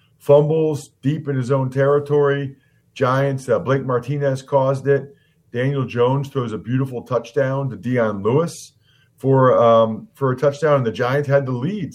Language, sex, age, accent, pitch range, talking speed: English, male, 40-59, American, 115-145 Hz, 160 wpm